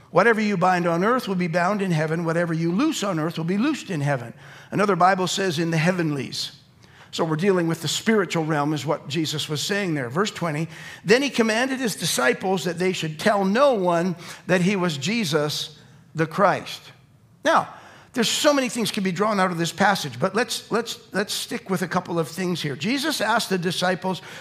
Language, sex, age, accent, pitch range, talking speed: English, male, 60-79, American, 165-215 Hz, 210 wpm